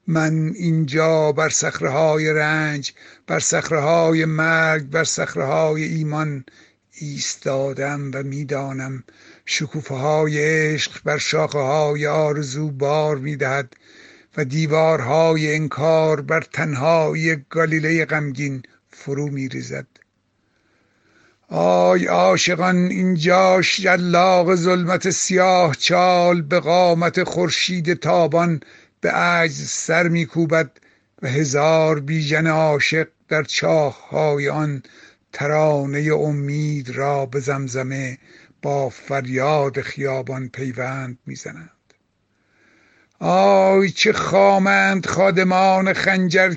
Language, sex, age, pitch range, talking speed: Persian, male, 60-79, 145-175 Hz, 85 wpm